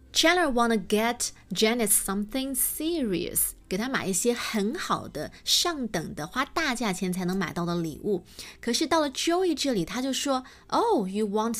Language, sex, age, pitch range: Chinese, female, 20-39, 195-270 Hz